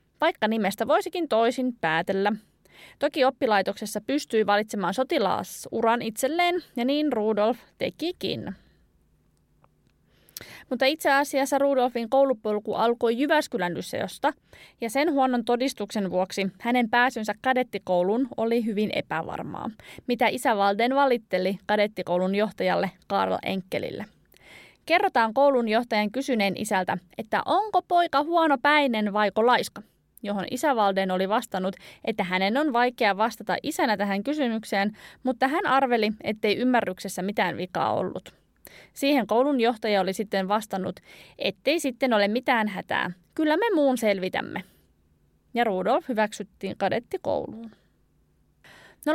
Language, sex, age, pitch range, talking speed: Finnish, female, 20-39, 205-270 Hz, 115 wpm